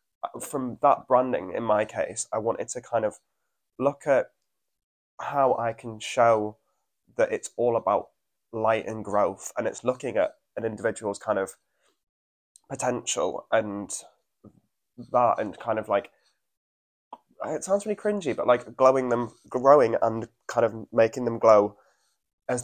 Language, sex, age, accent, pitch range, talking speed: English, male, 20-39, British, 110-130 Hz, 145 wpm